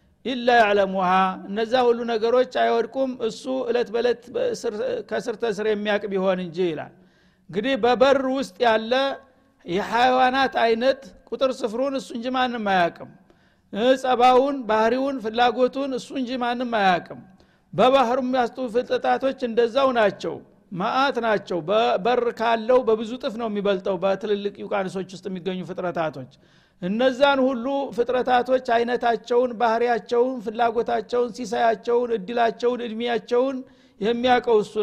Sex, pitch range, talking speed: male, 210-255 Hz, 110 wpm